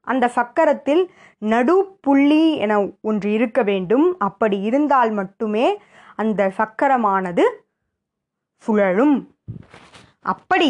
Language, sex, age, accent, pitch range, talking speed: Tamil, female, 20-39, native, 205-275 Hz, 85 wpm